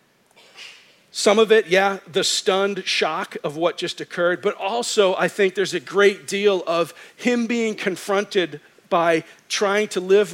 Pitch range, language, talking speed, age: 165-205 Hz, English, 155 wpm, 50-69